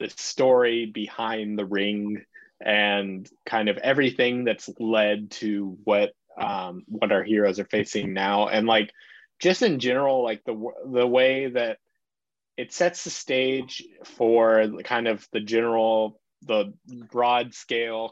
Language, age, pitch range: English, 20-39, 105-125 Hz